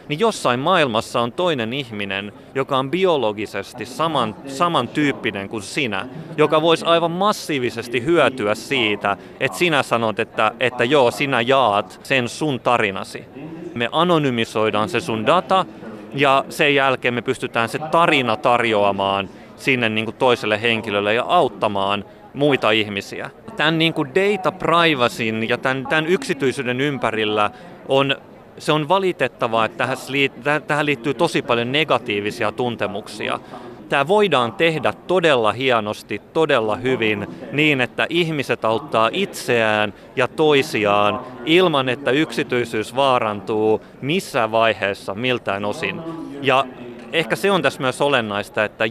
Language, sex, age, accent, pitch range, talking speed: Finnish, male, 30-49, native, 110-155 Hz, 120 wpm